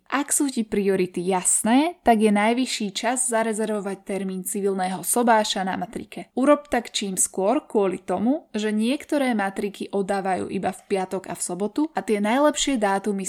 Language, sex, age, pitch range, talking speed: Slovak, female, 20-39, 195-240 Hz, 160 wpm